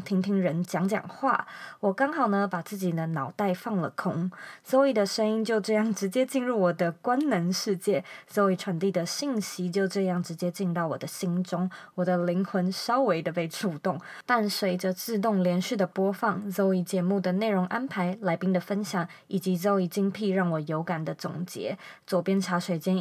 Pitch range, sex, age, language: 175-205 Hz, female, 20-39, Chinese